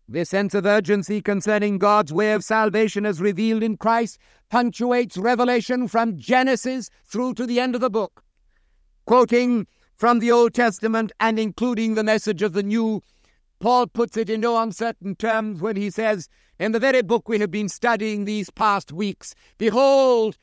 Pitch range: 205-245 Hz